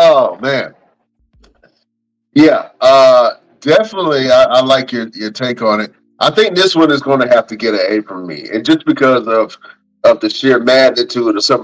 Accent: American